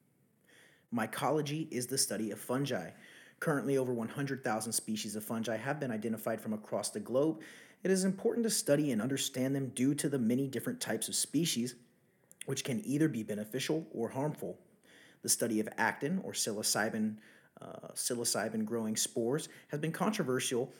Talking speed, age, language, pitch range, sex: 155 wpm, 30-49, English, 110-145 Hz, male